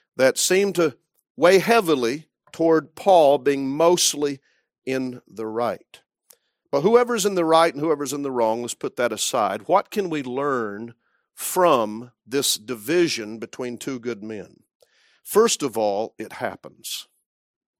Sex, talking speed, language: male, 140 wpm, English